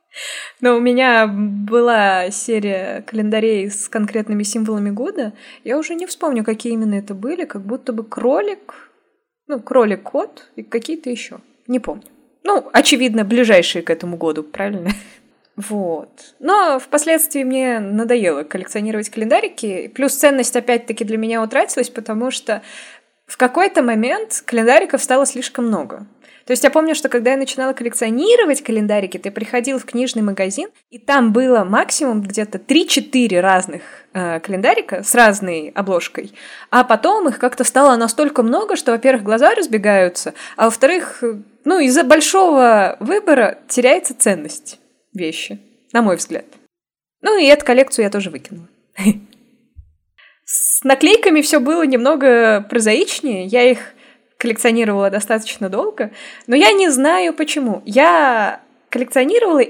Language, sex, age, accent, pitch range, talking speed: Russian, female, 20-39, native, 210-275 Hz, 135 wpm